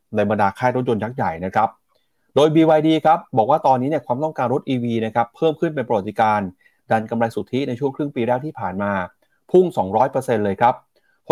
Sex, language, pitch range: male, Thai, 110-145 Hz